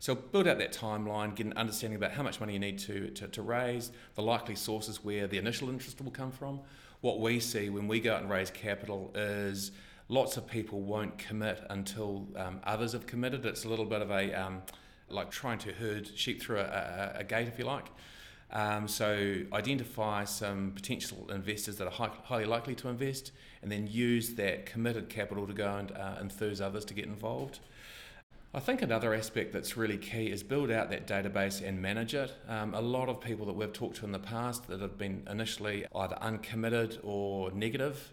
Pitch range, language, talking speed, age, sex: 100-120 Hz, English, 210 wpm, 40-59, male